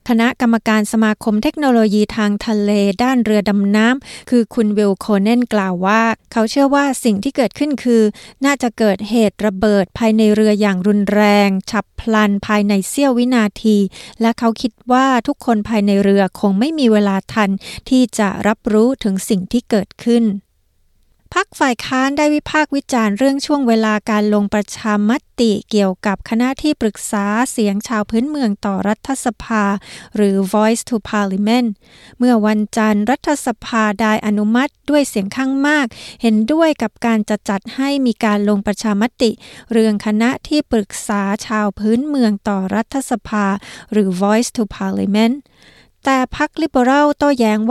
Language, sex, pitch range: Thai, female, 210-245 Hz